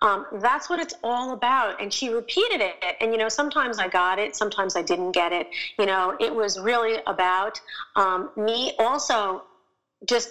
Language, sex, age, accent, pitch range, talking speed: English, female, 40-59, American, 210-260 Hz, 185 wpm